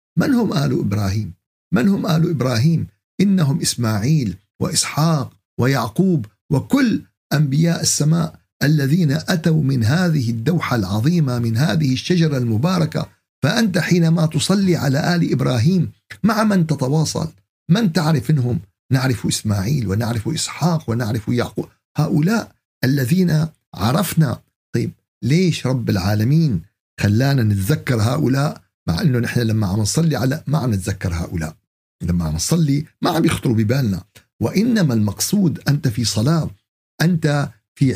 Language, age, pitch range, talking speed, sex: Arabic, 50-69, 110-160 Hz, 125 wpm, male